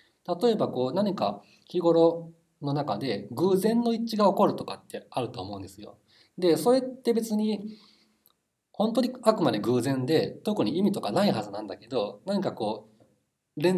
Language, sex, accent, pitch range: Japanese, male, native, 110-180 Hz